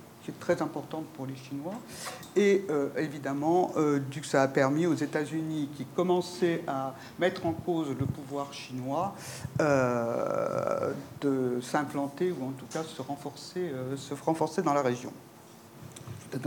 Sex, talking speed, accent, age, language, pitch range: male, 155 wpm, French, 50-69, French, 140-180 Hz